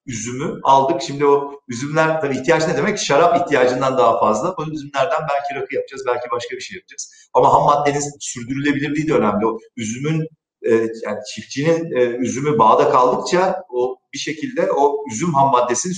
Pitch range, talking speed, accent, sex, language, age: 125-160 Hz, 165 wpm, native, male, Turkish, 50-69